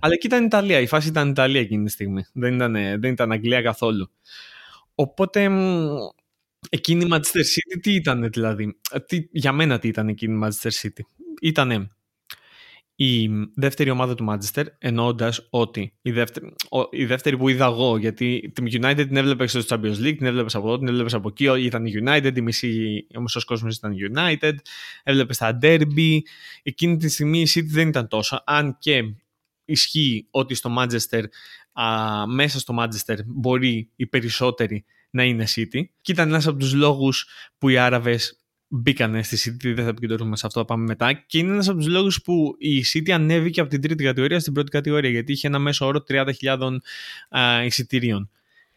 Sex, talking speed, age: male, 175 wpm, 20-39